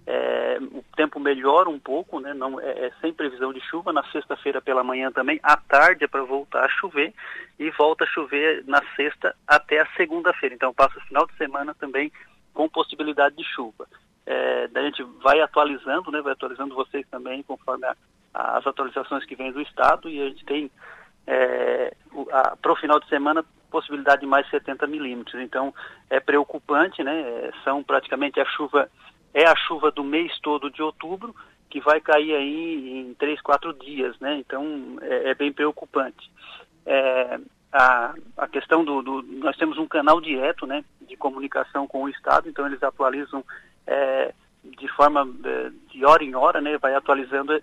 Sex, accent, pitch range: male, Brazilian, 135-155 Hz